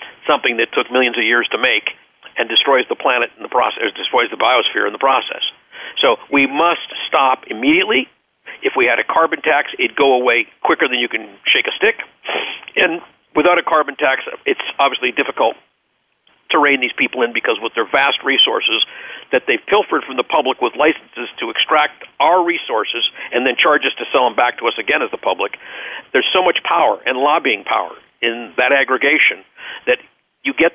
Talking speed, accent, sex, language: 195 wpm, American, male, English